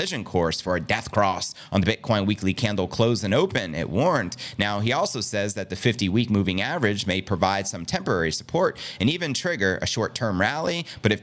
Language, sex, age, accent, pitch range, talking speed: English, male, 30-49, American, 95-125 Hz, 200 wpm